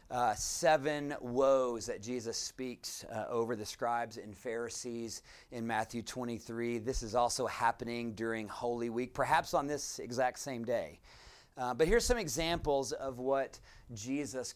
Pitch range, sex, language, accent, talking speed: 115-135 Hz, male, English, American, 150 wpm